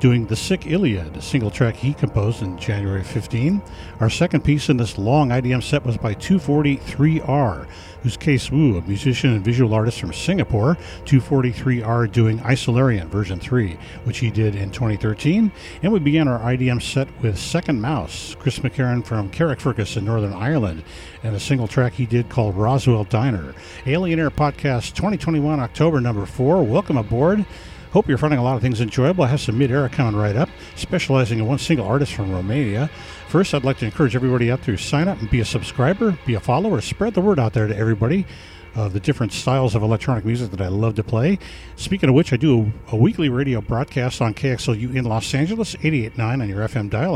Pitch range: 110-145 Hz